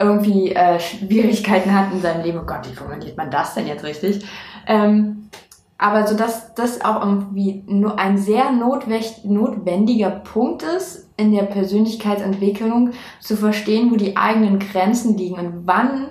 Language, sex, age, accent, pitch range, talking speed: German, female, 20-39, German, 200-240 Hz, 155 wpm